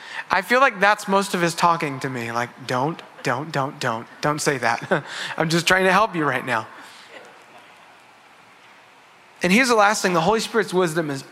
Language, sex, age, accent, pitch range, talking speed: English, male, 30-49, American, 155-210 Hz, 190 wpm